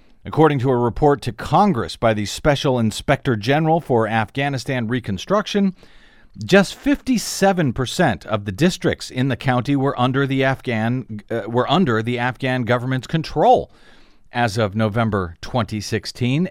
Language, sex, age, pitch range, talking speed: English, male, 40-59, 115-165 Hz, 140 wpm